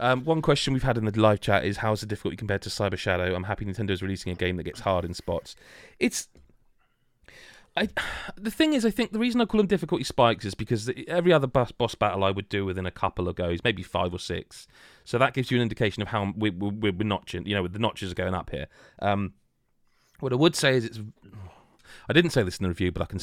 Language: English